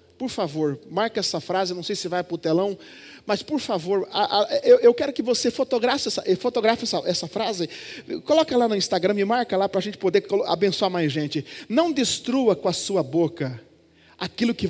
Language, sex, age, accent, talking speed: Portuguese, male, 40-59, Brazilian, 205 wpm